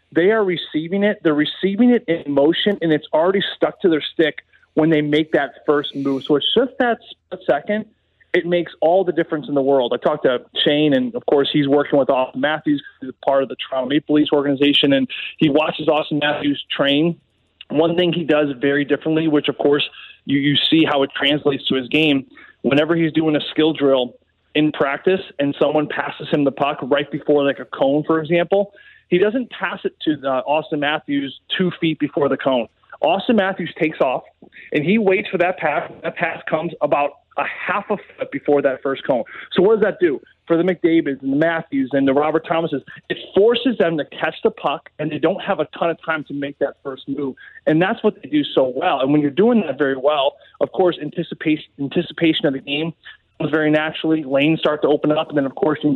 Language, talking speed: English, 220 wpm